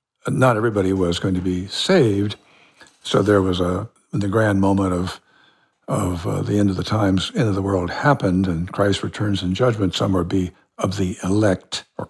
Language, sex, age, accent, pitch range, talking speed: English, male, 60-79, American, 95-125 Hz, 195 wpm